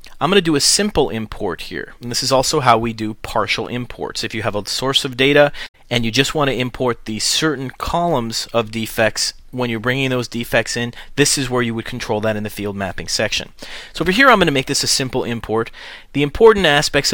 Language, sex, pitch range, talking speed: English, male, 110-135 Hz, 235 wpm